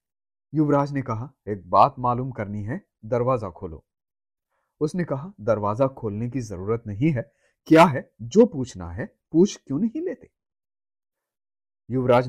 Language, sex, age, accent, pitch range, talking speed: Hindi, male, 30-49, native, 100-135 Hz, 135 wpm